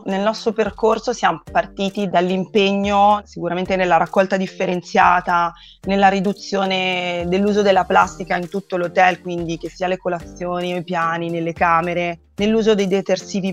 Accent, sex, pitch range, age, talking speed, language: native, female, 175-205 Hz, 30-49, 135 wpm, Italian